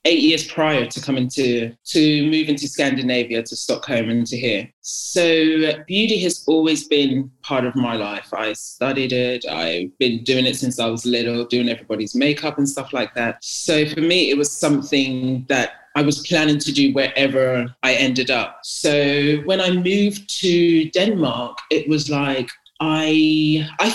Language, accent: English, British